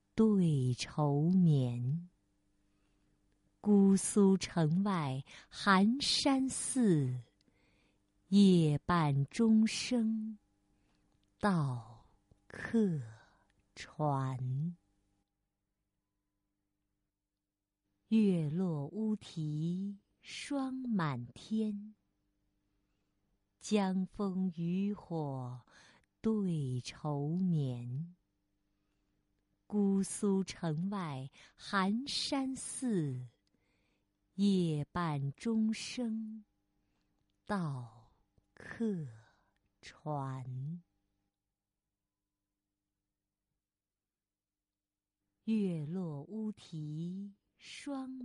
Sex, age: female, 50-69